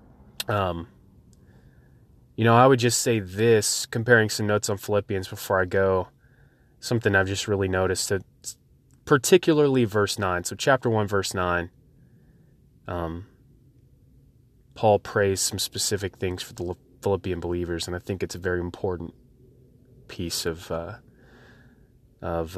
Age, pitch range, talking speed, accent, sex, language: 20-39, 90-125 Hz, 135 wpm, American, male, English